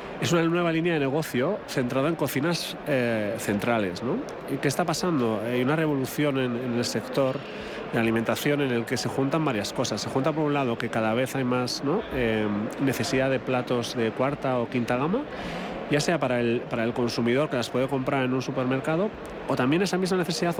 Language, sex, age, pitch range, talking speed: Spanish, male, 30-49, 120-150 Hz, 205 wpm